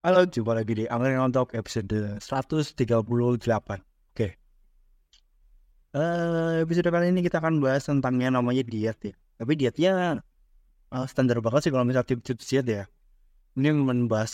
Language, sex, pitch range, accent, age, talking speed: Indonesian, male, 115-155 Hz, native, 20-39, 140 wpm